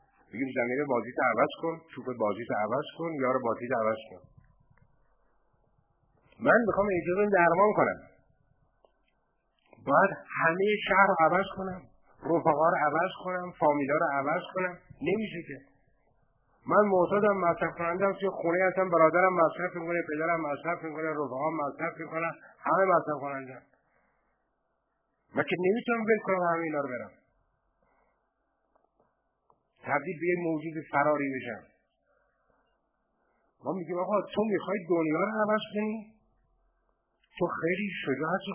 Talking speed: 125 wpm